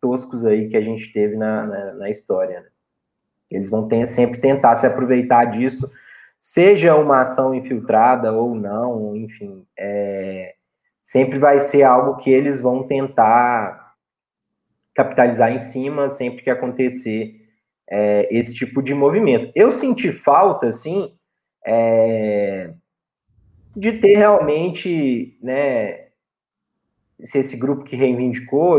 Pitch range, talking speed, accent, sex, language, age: 120-145 Hz, 115 wpm, Brazilian, male, Portuguese, 20-39